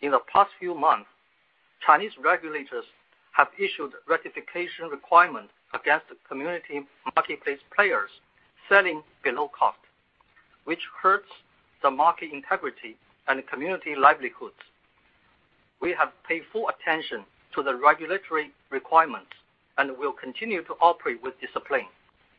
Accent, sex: Chinese, male